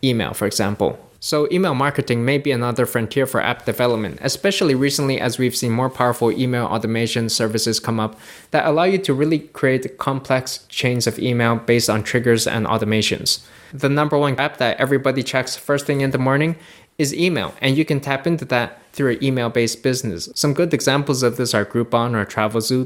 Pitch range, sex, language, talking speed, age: 115-140 Hz, male, English, 195 wpm, 20-39